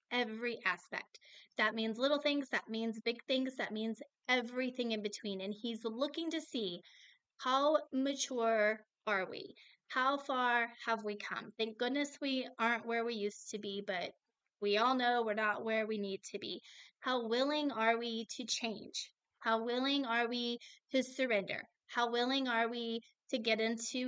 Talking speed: 170 wpm